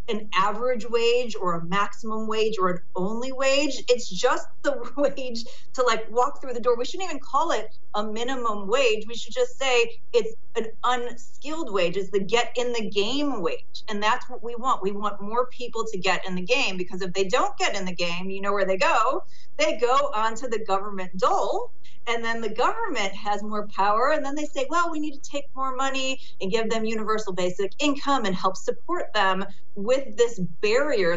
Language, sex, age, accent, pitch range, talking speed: English, female, 30-49, American, 200-255 Hz, 210 wpm